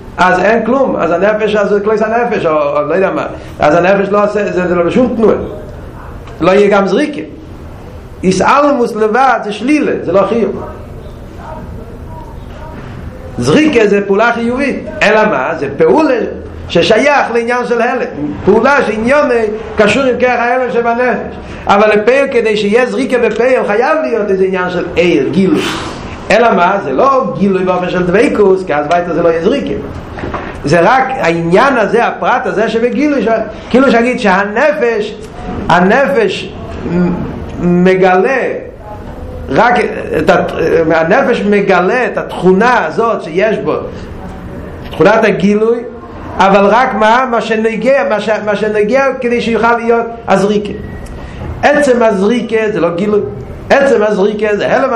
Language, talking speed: Hebrew, 135 wpm